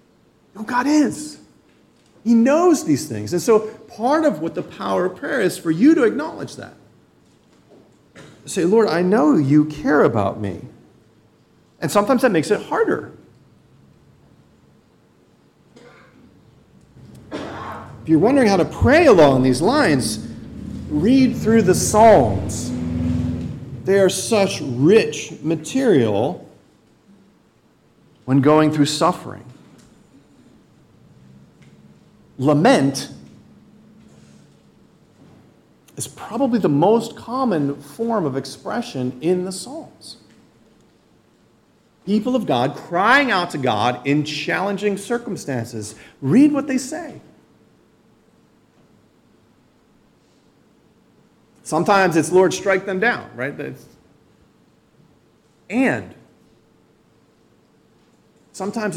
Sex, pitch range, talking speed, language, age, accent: male, 135-225 Hz, 95 wpm, English, 40-59, American